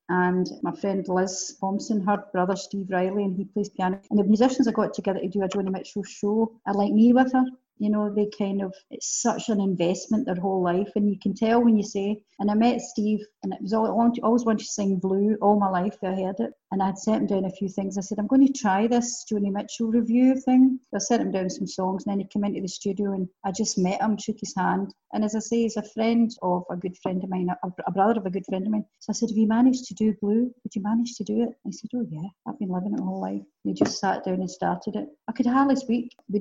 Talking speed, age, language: 275 wpm, 40-59, English